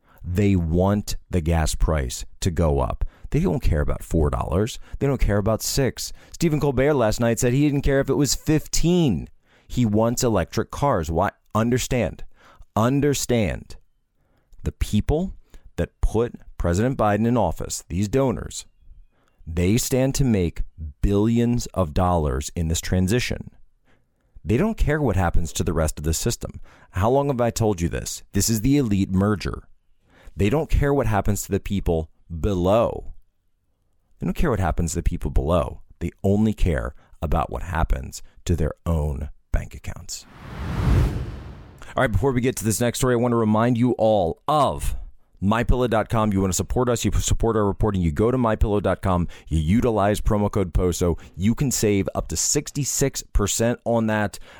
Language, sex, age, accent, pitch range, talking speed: English, male, 40-59, American, 85-115 Hz, 170 wpm